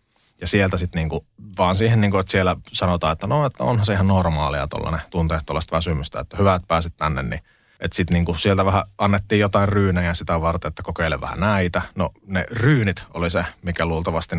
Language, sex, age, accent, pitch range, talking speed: Finnish, male, 30-49, native, 85-110 Hz, 190 wpm